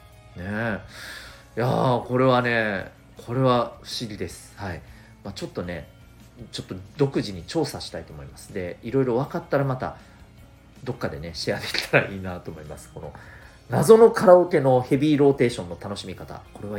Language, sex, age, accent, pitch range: Japanese, male, 40-59, native, 90-135 Hz